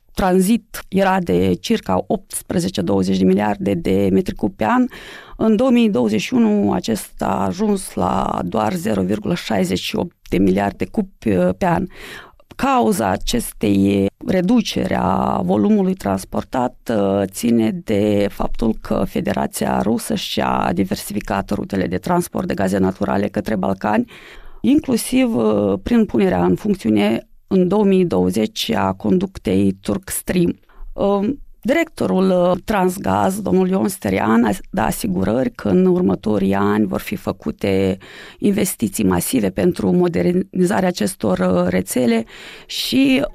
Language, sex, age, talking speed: Romanian, female, 30-49, 105 wpm